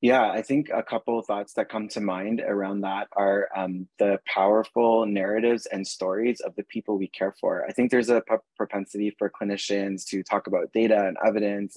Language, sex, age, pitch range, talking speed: English, male, 20-39, 105-120 Hz, 200 wpm